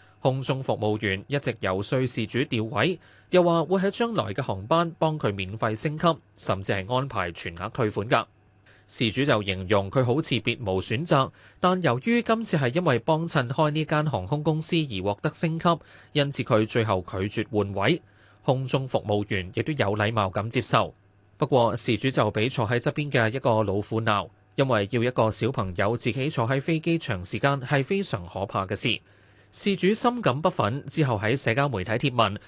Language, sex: Chinese, male